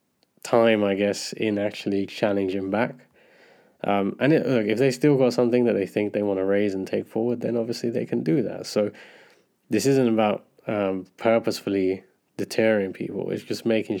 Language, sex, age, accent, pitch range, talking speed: English, male, 20-39, British, 95-115 Hz, 185 wpm